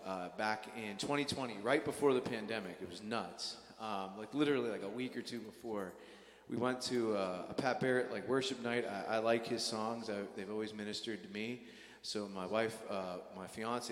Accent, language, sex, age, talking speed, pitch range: American, English, male, 30-49, 200 wpm, 95-120 Hz